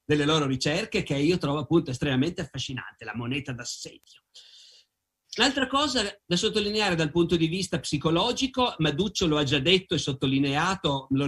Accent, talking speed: native, 155 wpm